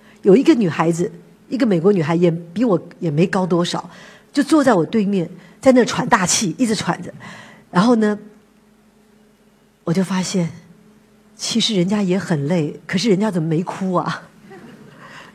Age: 50-69